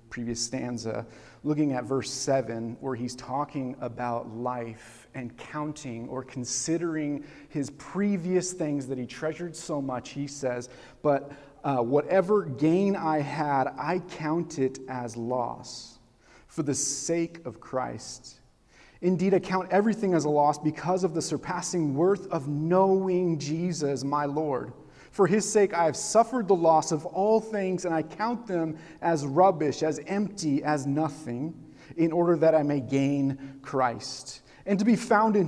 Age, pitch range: 40-59, 130-175 Hz